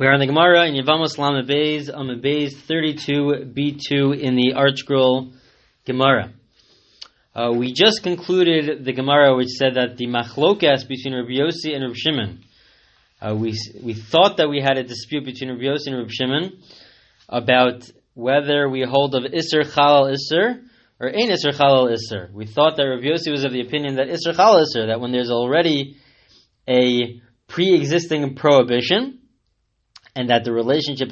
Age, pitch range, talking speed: 20-39, 125-160 Hz, 155 wpm